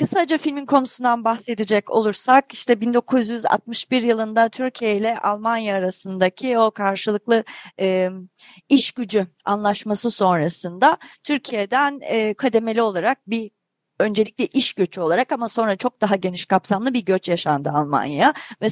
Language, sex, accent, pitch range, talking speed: Turkish, female, native, 210-275 Hz, 120 wpm